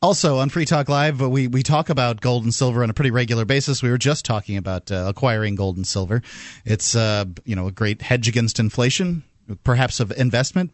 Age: 30-49